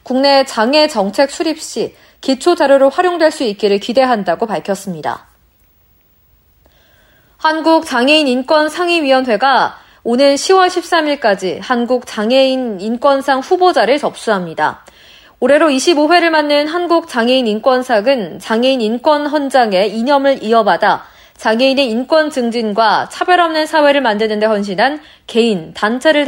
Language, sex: Korean, female